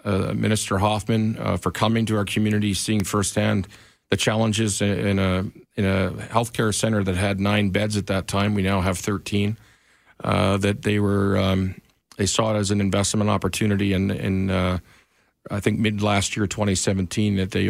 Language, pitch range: English, 100-110 Hz